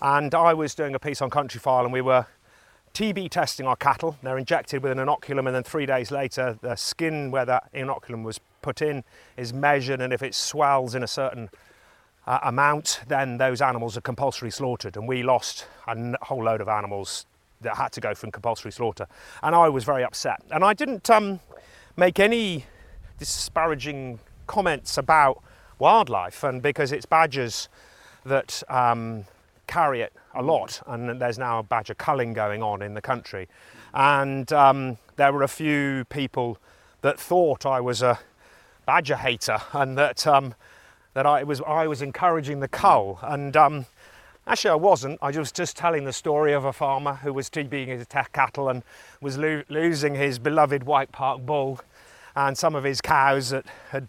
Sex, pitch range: male, 125-145 Hz